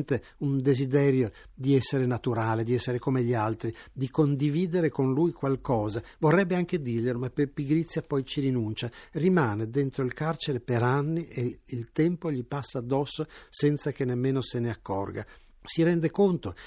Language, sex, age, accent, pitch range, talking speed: Italian, male, 60-79, native, 115-150 Hz, 160 wpm